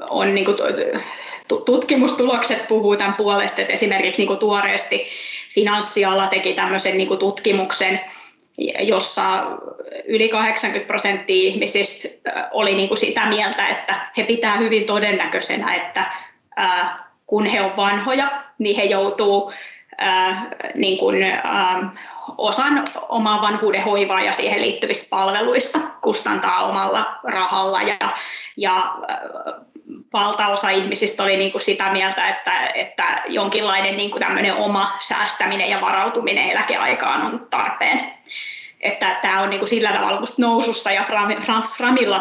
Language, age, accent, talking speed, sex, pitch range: Finnish, 20-39, native, 110 wpm, female, 200-260 Hz